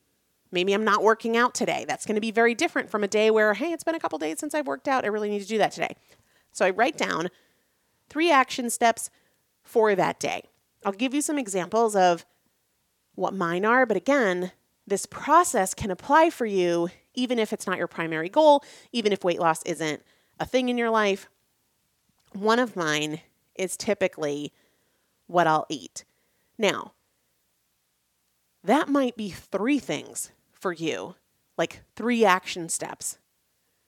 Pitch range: 170-230 Hz